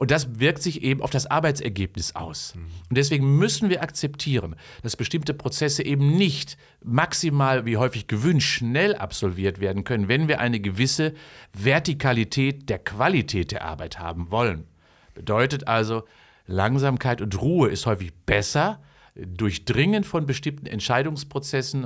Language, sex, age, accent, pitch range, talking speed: German, male, 50-69, German, 110-145 Hz, 135 wpm